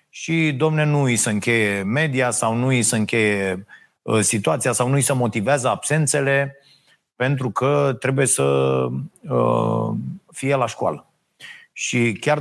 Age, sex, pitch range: 30-49, male, 110-155 Hz